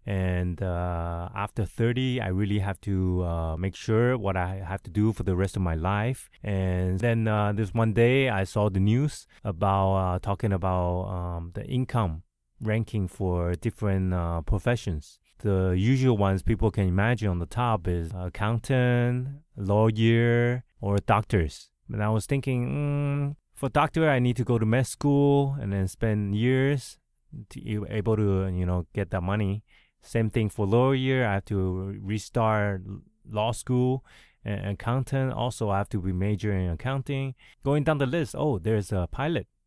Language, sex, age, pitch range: Chinese, male, 20-39, 95-120 Hz